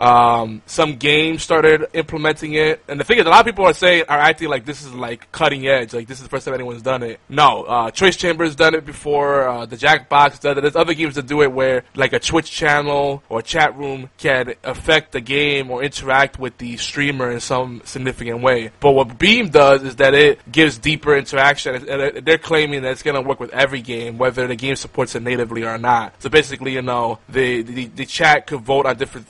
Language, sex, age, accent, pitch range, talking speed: English, male, 20-39, American, 120-150 Hz, 230 wpm